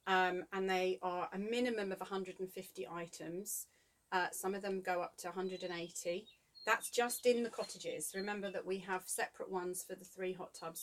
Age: 30-49